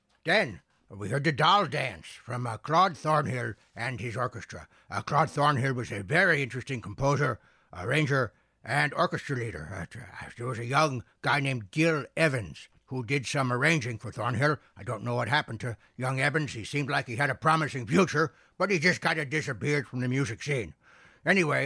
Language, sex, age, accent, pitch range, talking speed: English, male, 60-79, American, 120-150 Hz, 190 wpm